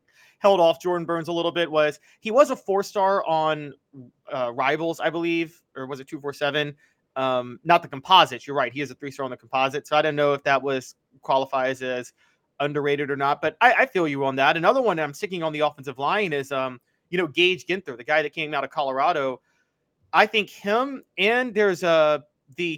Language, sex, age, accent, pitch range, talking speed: English, male, 30-49, American, 130-175 Hz, 225 wpm